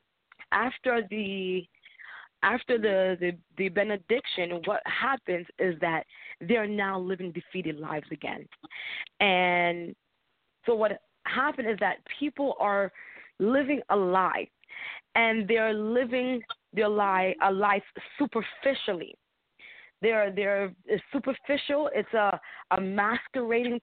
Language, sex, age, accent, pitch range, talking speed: English, female, 20-39, American, 200-250 Hz, 110 wpm